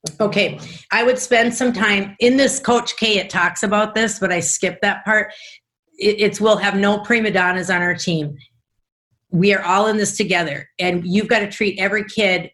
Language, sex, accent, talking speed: English, female, American, 200 wpm